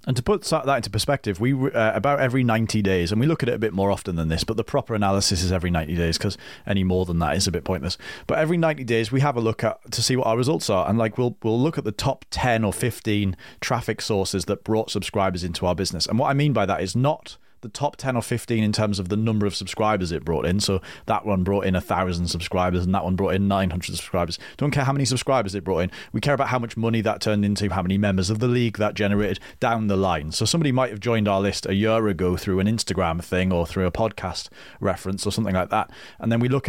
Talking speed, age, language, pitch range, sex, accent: 275 wpm, 30-49, English, 95-115 Hz, male, British